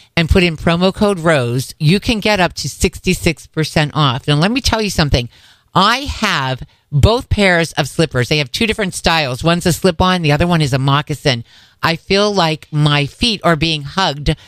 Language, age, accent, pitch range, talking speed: English, 50-69, American, 140-180 Hz, 195 wpm